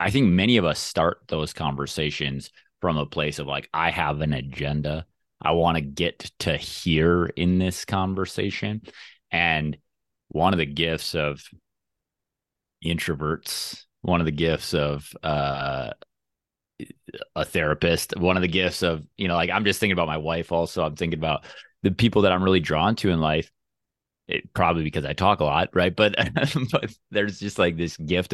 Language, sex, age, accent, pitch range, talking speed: English, male, 30-49, American, 75-95 Hz, 175 wpm